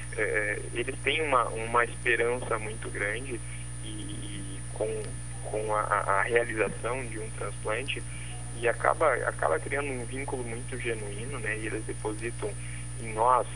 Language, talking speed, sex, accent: Portuguese, 140 wpm, male, Brazilian